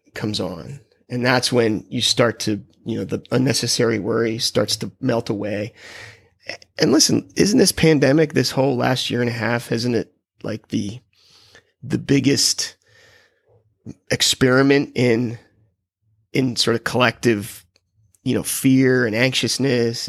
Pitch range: 115-130 Hz